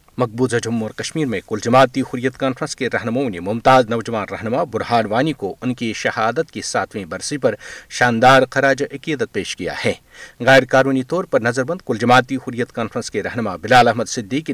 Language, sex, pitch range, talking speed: Urdu, male, 115-140 Hz, 180 wpm